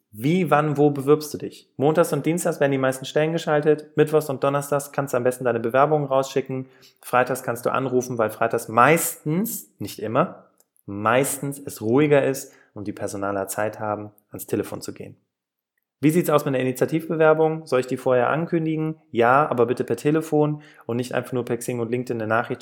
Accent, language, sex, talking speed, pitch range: German, German, male, 195 wpm, 115-150 Hz